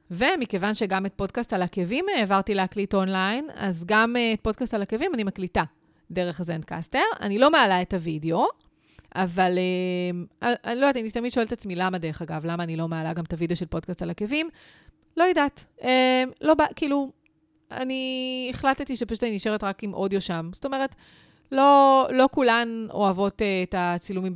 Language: Hebrew